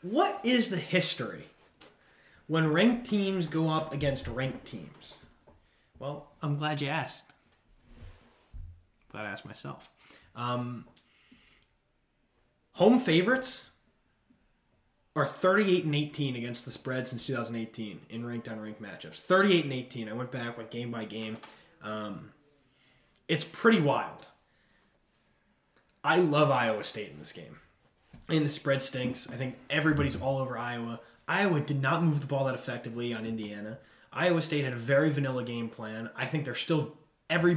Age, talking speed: 20-39, 140 wpm